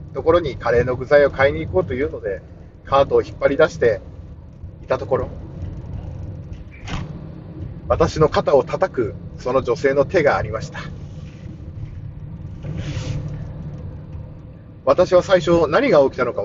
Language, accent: Japanese, native